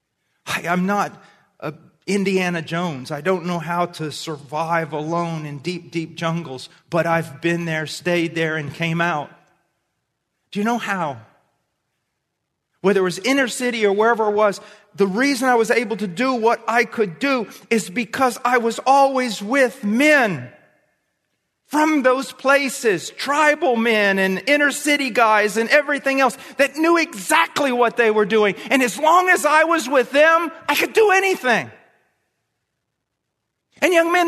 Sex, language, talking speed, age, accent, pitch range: male, English, 160 wpm, 40-59, American, 190-285 Hz